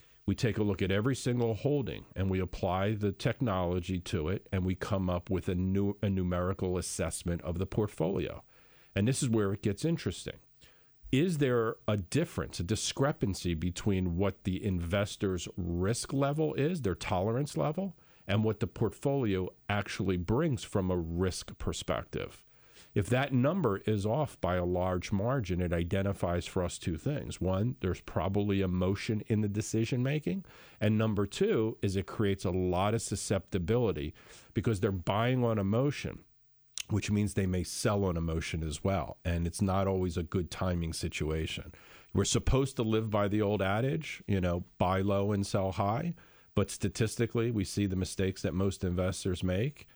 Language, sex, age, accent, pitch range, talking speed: English, male, 50-69, American, 95-115 Hz, 170 wpm